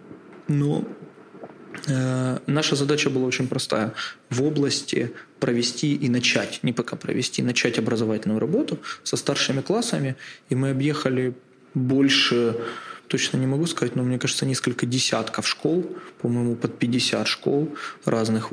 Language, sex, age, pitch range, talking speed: Ukrainian, male, 20-39, 120-135 Hz, 135 wpm